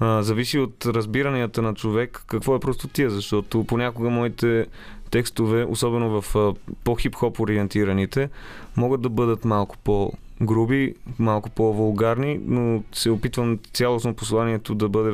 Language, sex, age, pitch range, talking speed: Bulgarian, male, 20-39, 105-120 Hz, 120 wpm